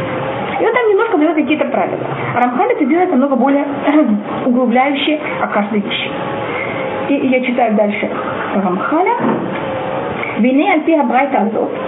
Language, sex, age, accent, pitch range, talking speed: Russian, female, 30-49, native, 230-300 Hz, 130 wpm